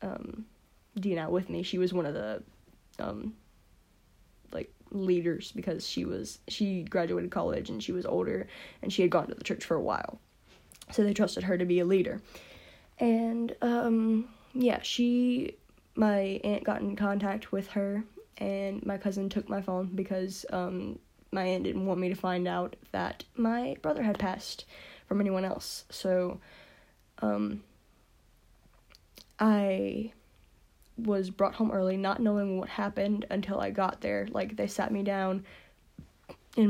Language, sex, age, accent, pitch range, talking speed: English, female, 10-29, American, 185-205 Hz, 160 wpm